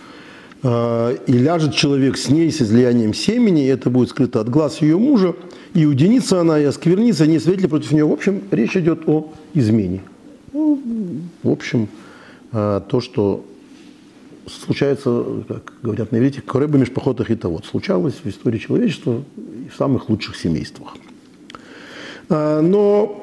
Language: Russian